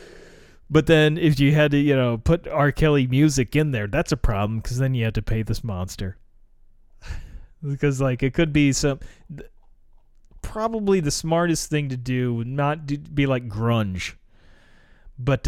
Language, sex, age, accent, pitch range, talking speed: English, male, 30-49, American, 100-135 Hz, 165 wpm